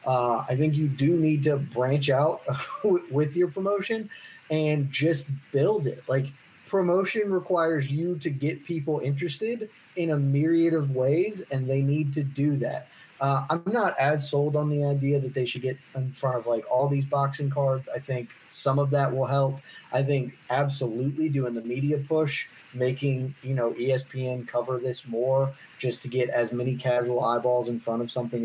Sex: male